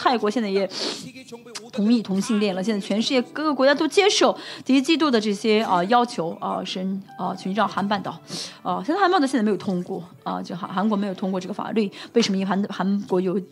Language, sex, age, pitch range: Chinese, female, 20-39, 180-220 Hz